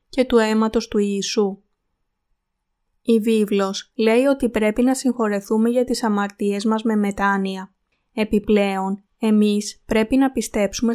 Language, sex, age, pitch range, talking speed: Greek, female, 20-39, 205-235 Hz, 125 wpm